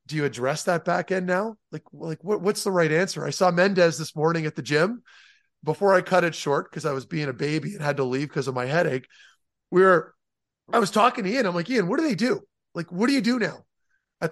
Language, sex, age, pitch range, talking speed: English, male, 30-49, 160-200 Hz, 260 wpm